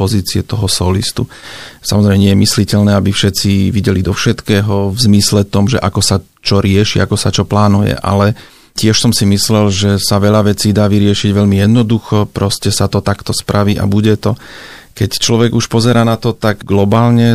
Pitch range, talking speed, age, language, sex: 100-110 Hz, 185 wpm, 40-59, Slovak, male